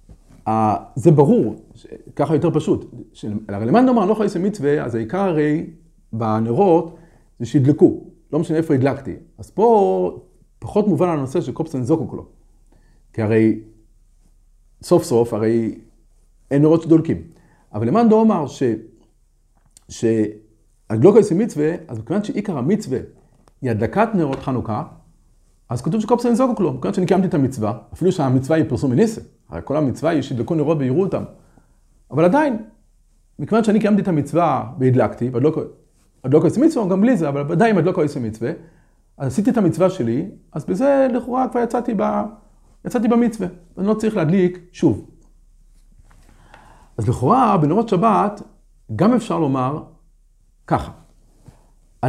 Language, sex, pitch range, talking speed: Hebrew, male, 130-185 Hz, 95 wpm